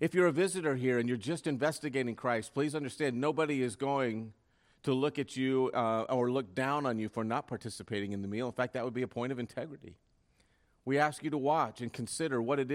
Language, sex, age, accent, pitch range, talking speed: English, male, 40-59, American, 110-135 Hz, 230 wpm